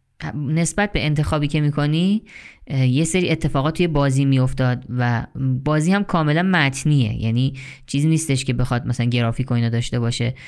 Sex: female